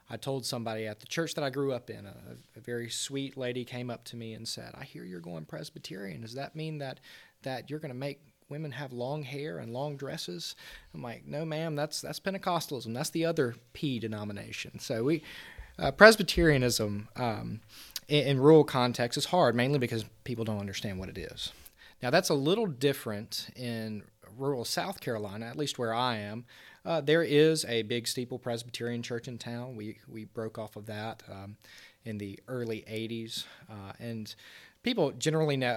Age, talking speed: 30-49, 190 wpm